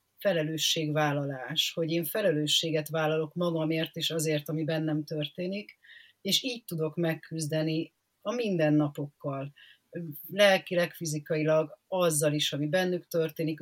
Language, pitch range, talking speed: Hungarian, 155-175 Hz, 105 wpm